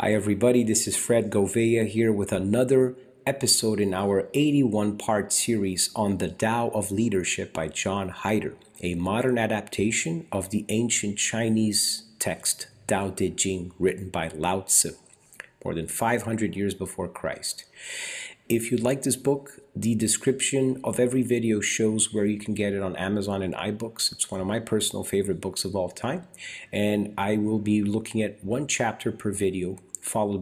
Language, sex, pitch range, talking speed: English, male, 95-120 Hz, 170 wpm